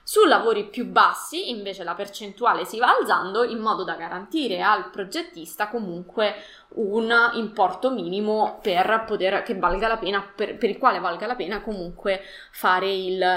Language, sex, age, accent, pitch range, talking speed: Italian, female, 20-39, native, 185-230 Hz, 160 wpm